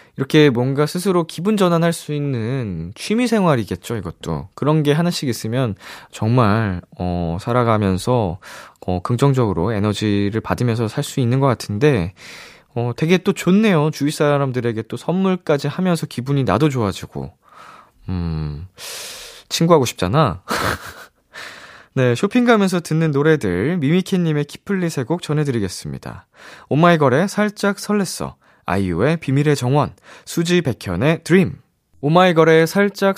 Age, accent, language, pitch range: 20-39, native, Korean, 115-170 Hz